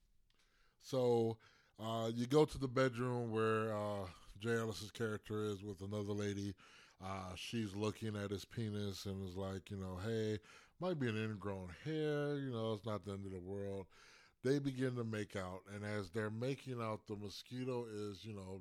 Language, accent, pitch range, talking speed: English, American, 95-125 Hz, 185 wpm